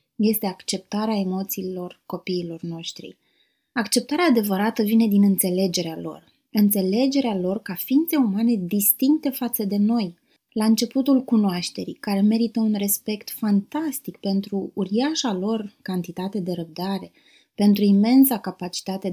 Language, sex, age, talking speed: Romanian, female, 20-39, 115 wpm